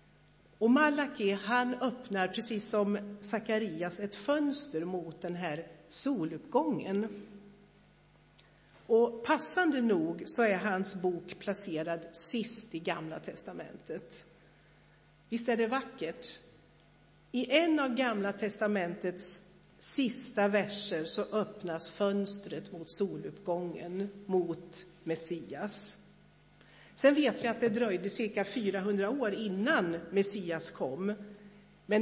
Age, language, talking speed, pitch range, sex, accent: 60-79, Swedish, 105 wpm, 180-230 Hz, female, native